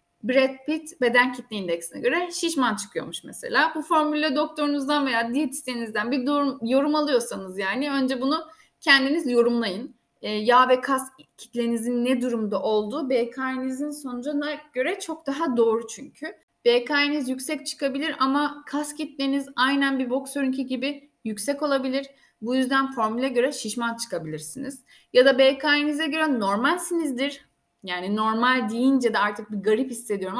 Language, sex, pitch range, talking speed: Turkish, female, 230-290 Hz, 135 wpm